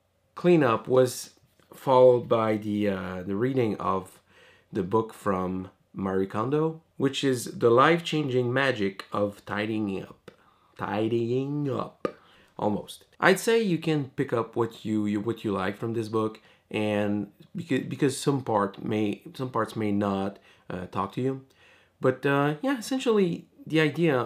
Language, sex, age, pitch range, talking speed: English, male, 30-49, 100-140 Hz, 150 wpm